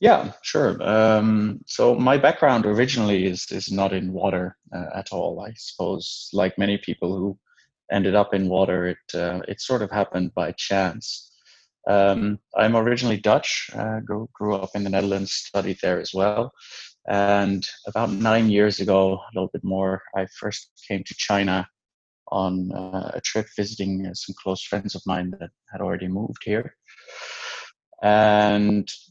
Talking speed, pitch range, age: 160 wpm, 95-110 Hz, 20-39